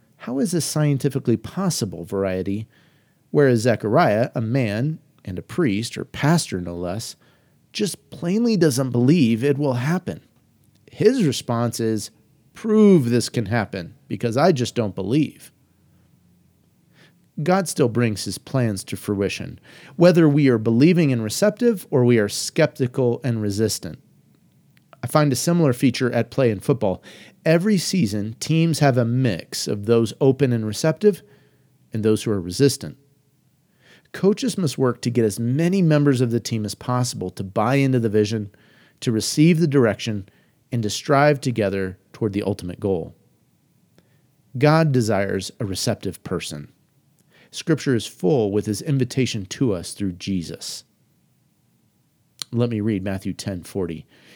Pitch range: 105-150 Hz